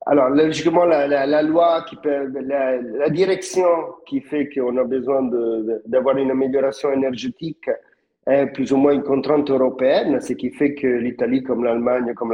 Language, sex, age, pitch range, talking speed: French, male, 50-69, 130-150 Hz, 185 wpm